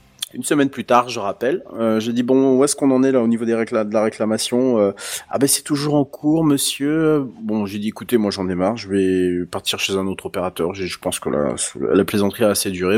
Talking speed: 260 wpm